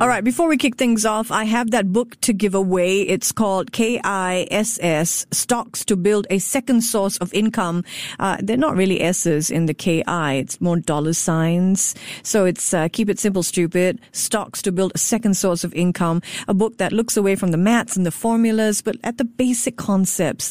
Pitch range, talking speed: 175-225 Hz, 200 wpm